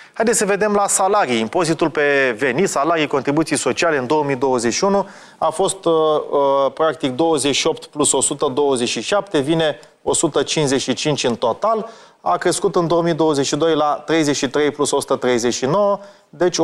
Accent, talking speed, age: native, 125 wpm, 30-49